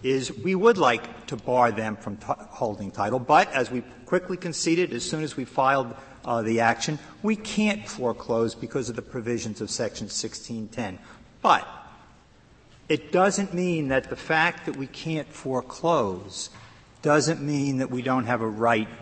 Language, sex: English, male